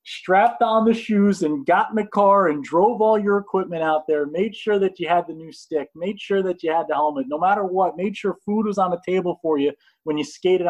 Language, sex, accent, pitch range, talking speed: English, male, American, 150-200 Hz, 260 wpm